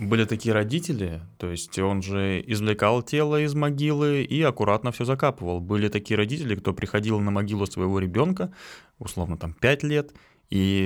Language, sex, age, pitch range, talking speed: Russian, male, 20-39, 90-115 Hz, 160 wpm